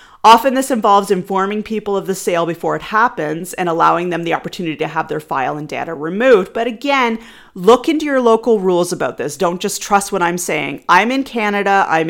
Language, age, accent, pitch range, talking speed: English, 40-59, American, 170-230 Hz, 210 wpm